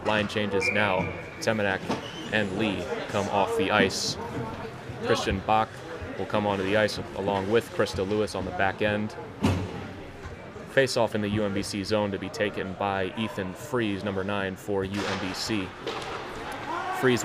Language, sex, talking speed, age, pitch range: English, male, 145 wpm, 30-49, 100-115 Hz